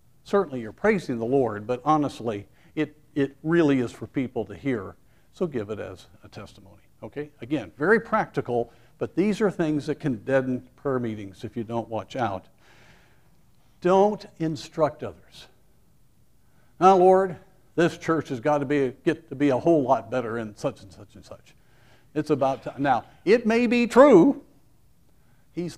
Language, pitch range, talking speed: English, 115-145 Hz, 170 wpm